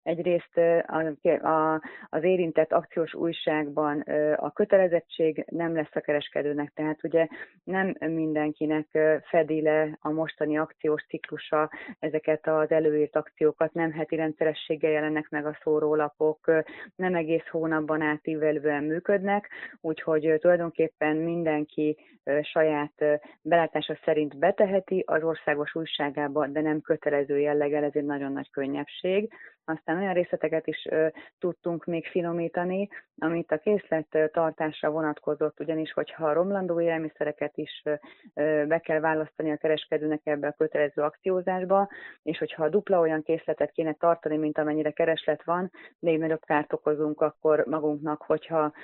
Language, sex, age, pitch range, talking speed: Hungarian, female, 30-49, 150-165 Hz, 130 wpm